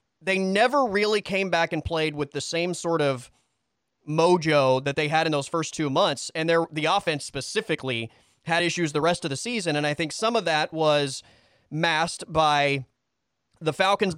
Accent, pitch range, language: American, 145-190 Hz, English